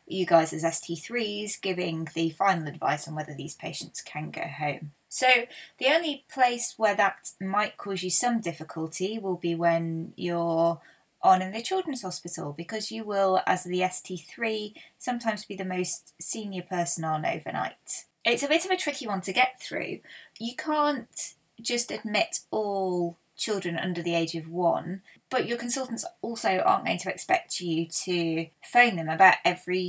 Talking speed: 170 wpm